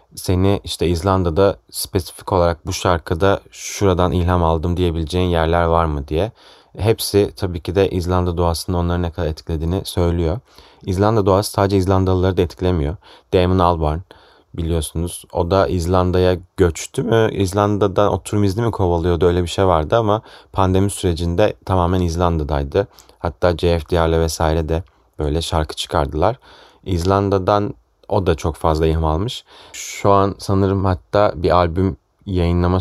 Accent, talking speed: native, 135 wpm